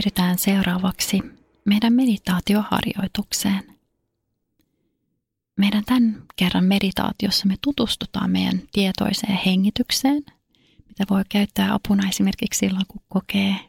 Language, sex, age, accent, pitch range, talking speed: Finnish, female, 30-49, native, 190-215 Hz, 90 wpm